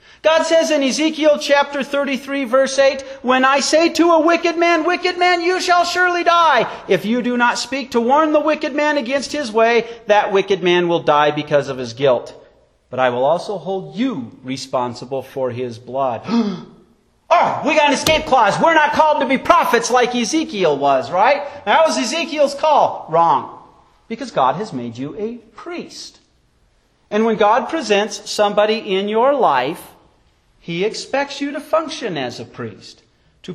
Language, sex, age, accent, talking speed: English, male, 40-59, American, 175 wpm